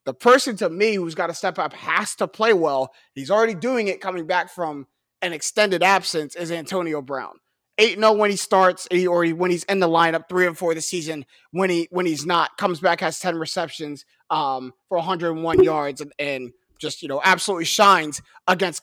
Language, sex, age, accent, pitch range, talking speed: English, male, 30-49, American, 155-195 Hz, 200 wpm